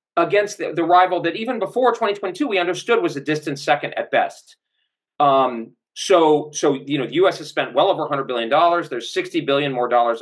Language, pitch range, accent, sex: Polish, 125-180 Hz, American, male